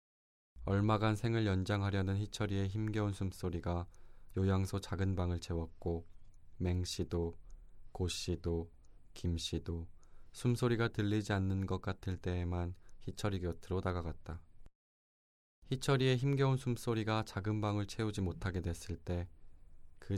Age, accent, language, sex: 20-39, native, Korean, male